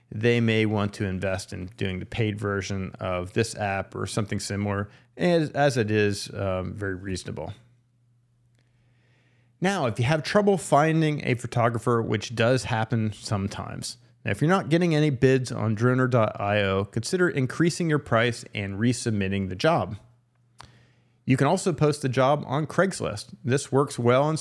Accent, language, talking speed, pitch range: American, English, 155 wpm, 110-135 Hz